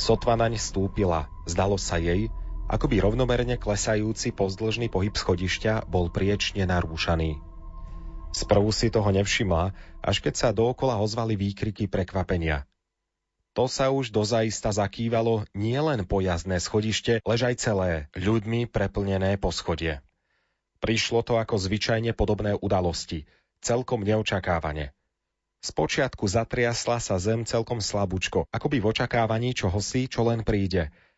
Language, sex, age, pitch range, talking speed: Slovak, male, 30-49, 90-115 Hz, 125 wpm